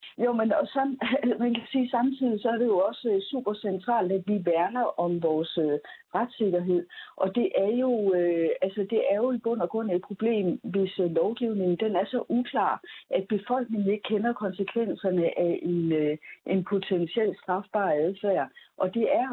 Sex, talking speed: female, 165 wpm